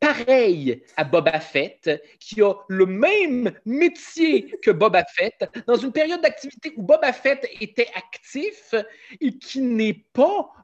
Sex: male